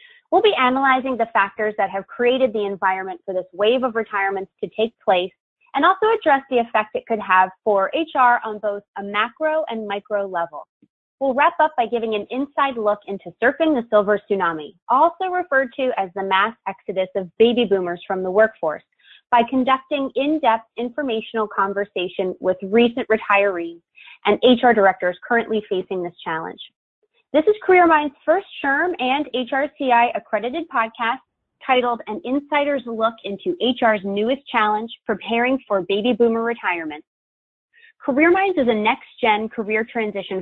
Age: 20-39